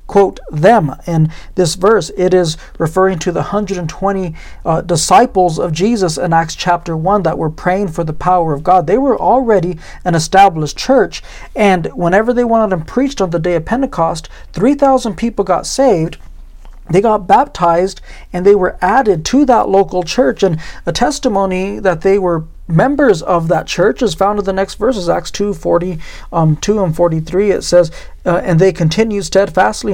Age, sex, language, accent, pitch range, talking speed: 40-59, male, English, American, 165-200 Hz, 180 wpm